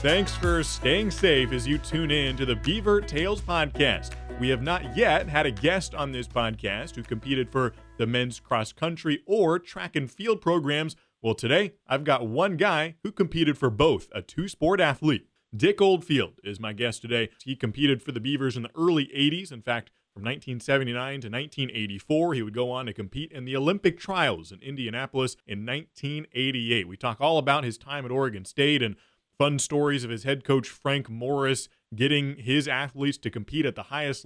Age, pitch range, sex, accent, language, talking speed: 30-49, 120-150 Hz, male, American, English, 190 wpm